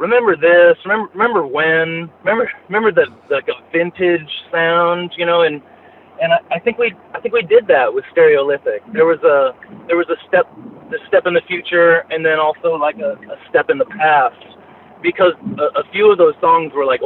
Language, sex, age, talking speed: English, male, 30-49, 210 wpm